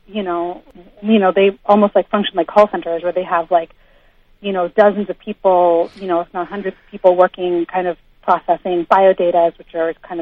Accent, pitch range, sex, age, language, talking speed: American, 180-210 Hz, female, 30-49, English, 205 wpm